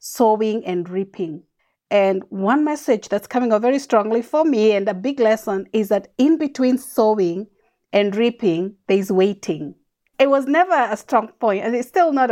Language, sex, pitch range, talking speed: English, female, 185-235 Hz, 175 wpm